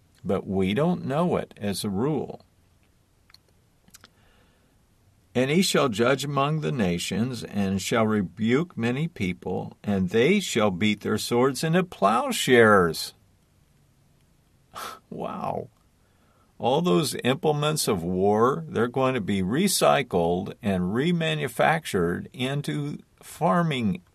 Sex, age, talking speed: male, 50-69, 105 wpm